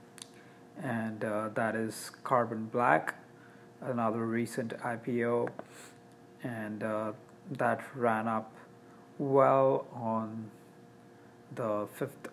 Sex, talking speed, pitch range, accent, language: male, 90 wpm, 110-130 Hz, Indian, English